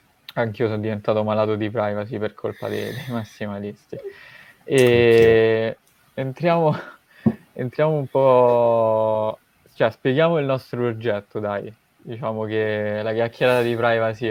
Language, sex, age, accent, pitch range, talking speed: Italian, male, 20-39, native, 110-125 Hz, 115 wpm